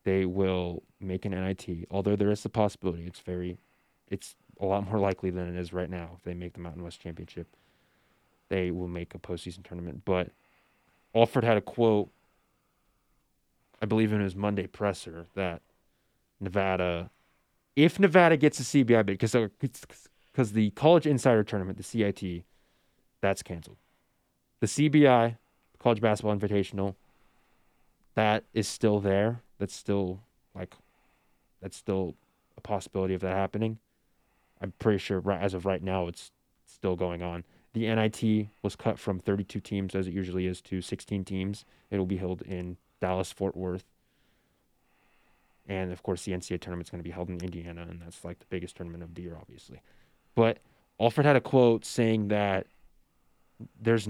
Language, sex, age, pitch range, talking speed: English, male, 20-39, 90-110 Hz, 160 wpm